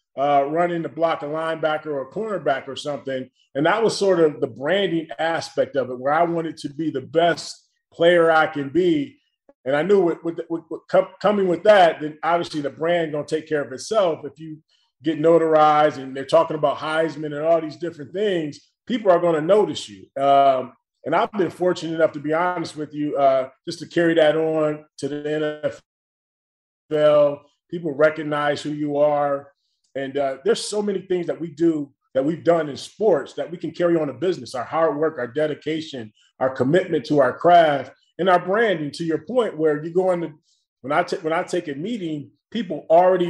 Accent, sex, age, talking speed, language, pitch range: American, male, 30-49, 205 wpm, English, 145-175 Hz